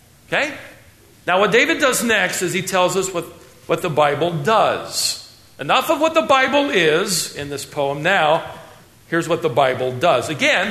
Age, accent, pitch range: 50-69, American, 150-205 Hz